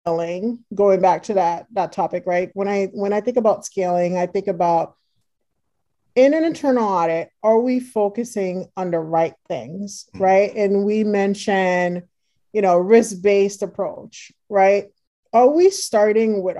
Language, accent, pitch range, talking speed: English, American, 185-220 Hz, 150 wpm